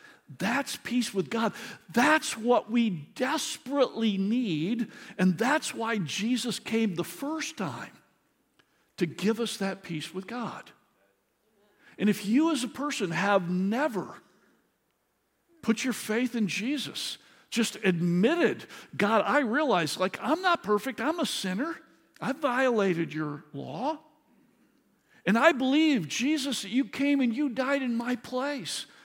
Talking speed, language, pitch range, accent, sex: 135 wpm, English, 200-275 Hz, American, male